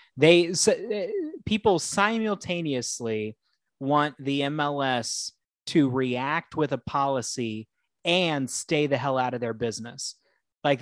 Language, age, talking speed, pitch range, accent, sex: English, 30-49, 120 wpm, 120-150 Hz, American, male